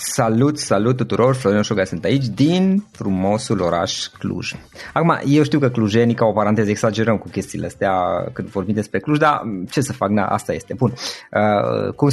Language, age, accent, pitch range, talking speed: Romanian, 20-39, native, 100-120 Hz, 185 wpm